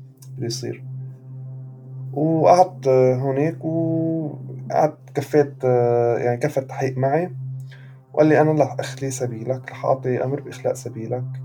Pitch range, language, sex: 125-140 Hz, Arabic, male